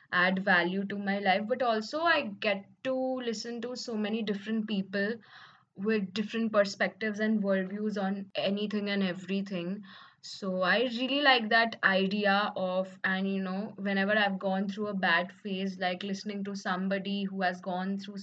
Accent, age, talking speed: Indian, 20-39, 165 wpm